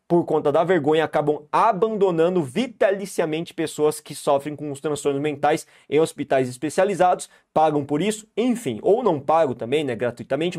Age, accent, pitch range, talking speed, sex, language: 20-39, Brazilian, 150-200 Hz, 155 wpm, male, Portuguese